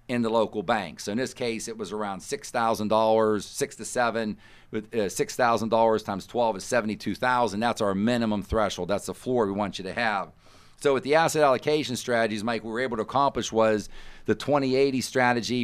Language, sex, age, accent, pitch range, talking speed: English, male, 50-69, American, 105-120 Hz, 215 wpm